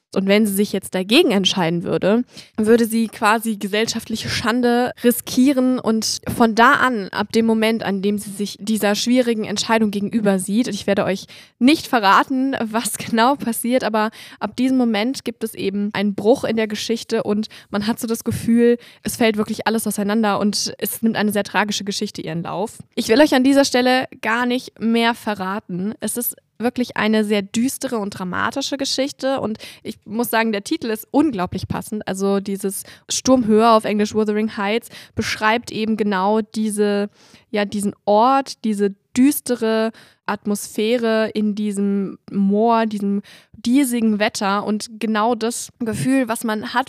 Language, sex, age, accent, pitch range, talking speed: German, female, 20-39, German, 210-240 Hz, 165 wpm